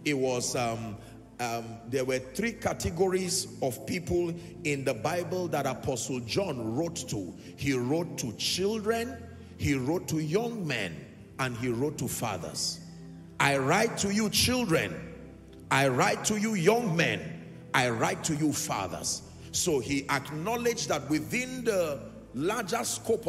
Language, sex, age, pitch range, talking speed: English, male, 50-69, 130-195 Hz, 145 wpm